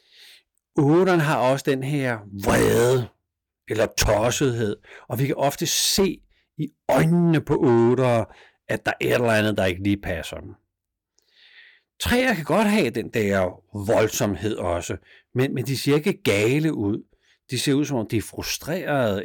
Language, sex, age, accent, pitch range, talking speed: Danish, male, 60-79, native, 100-145 Hz, 155 wpm